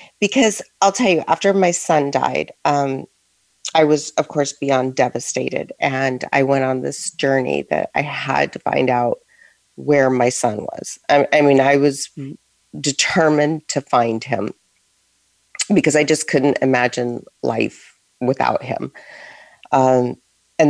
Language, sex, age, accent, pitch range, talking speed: English, female, 40-59, American, 130-160 Hz, 145 wpm